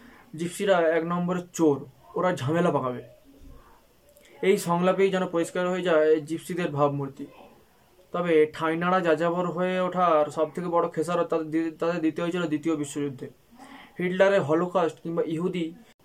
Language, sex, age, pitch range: Bengali, male, 20-39, 155-180 Hz